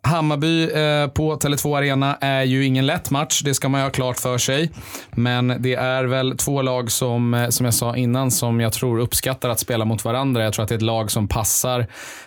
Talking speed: 215 wpm